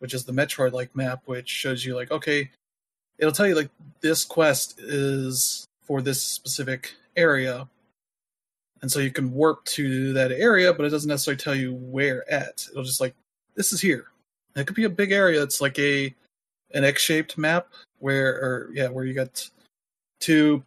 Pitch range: 130-150 Hz